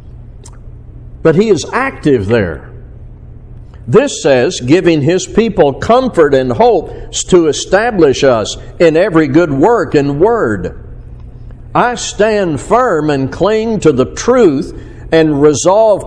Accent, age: American, 60-79